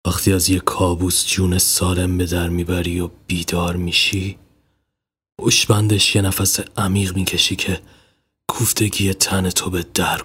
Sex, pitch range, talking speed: male, 90-105 Hz, 135 wpm